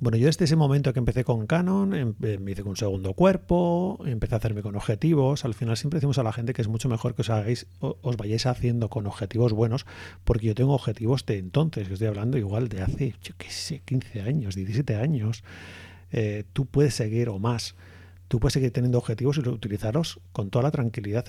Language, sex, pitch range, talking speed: Spanish, male, 105-140 Hz, 215 wpm